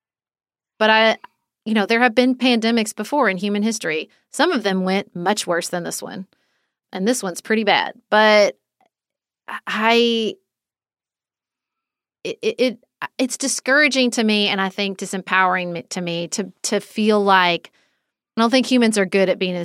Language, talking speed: English, 160 wpm